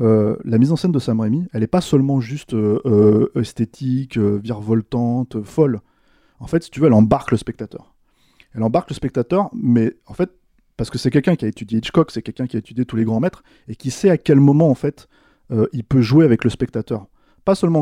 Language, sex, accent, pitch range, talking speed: French, male, French, 120-160 Hz, 235 wpm